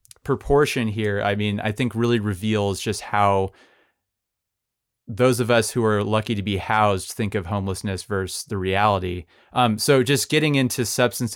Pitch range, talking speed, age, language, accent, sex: 100-120 Hz, 165 wpm, 30-49, English, American, male